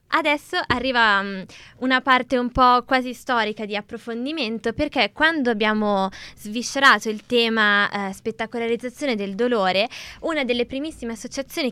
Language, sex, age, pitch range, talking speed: Italian, female, 20-39, 200-245 Hz, 125 wpm